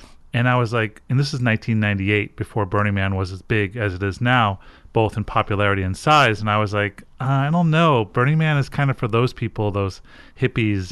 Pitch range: 105-135 Hz